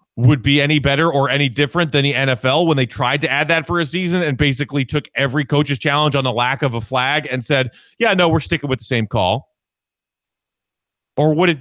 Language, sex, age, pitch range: English, male, 30-49, 125-155 Hz